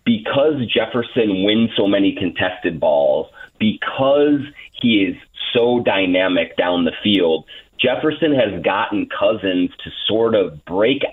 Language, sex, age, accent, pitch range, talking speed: English, male, 30-49, American, 100-135 Hz, 125 wpm